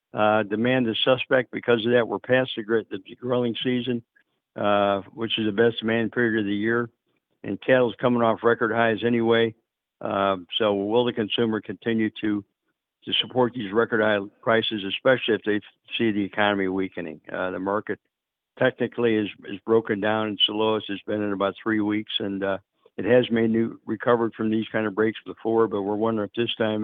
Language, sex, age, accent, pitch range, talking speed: English, male, 60-79, American, 105-120 Hz, 190 wpm